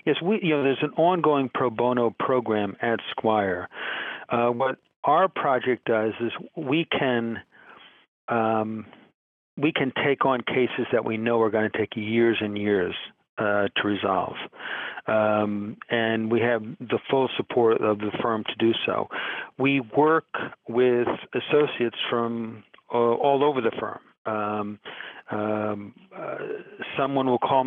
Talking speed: 145 wpm